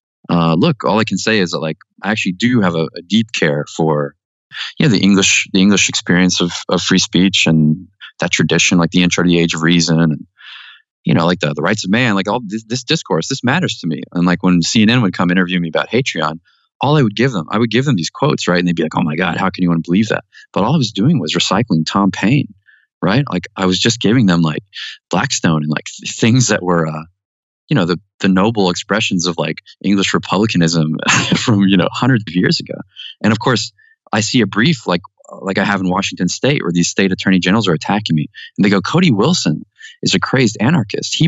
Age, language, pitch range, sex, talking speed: 20-39, English, 85-115 Hz, male, 245 wpm